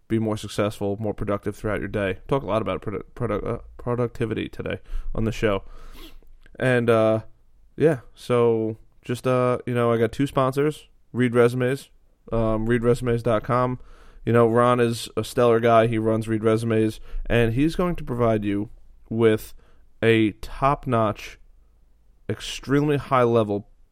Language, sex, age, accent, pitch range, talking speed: English, male, 20-39, American, 105-125 Hz, 150 wpm